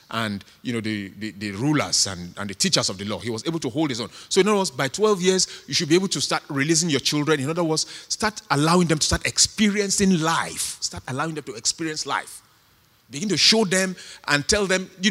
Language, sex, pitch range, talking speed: English, male, 135-190 Hz, 240 wpm